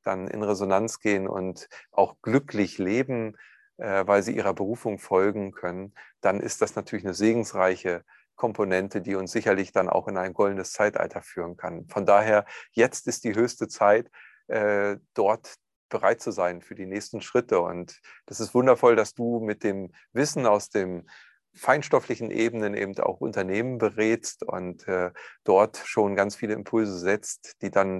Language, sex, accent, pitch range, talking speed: German, male, German, 95-115 Hz, 165 wpm